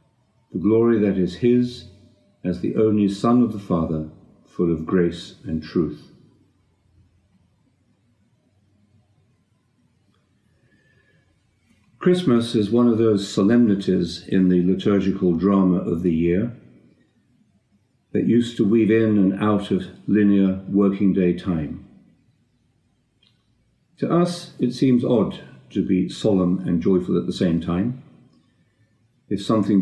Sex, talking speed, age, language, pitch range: male, 115 wpm, 50-69, English, 95-120 Hz